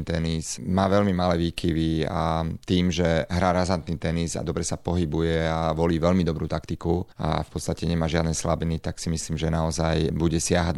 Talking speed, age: 185 wpm, 30-49